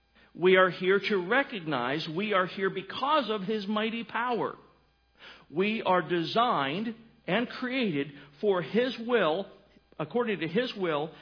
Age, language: 50-69, English